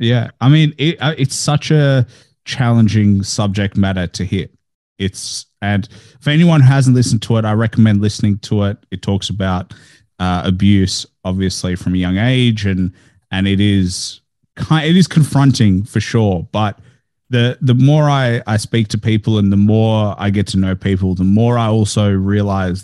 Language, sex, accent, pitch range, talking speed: English, male, Australian, 95-115 Hz, 175 wpm